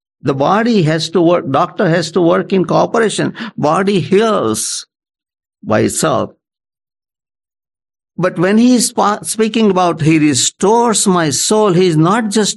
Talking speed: 140 wpm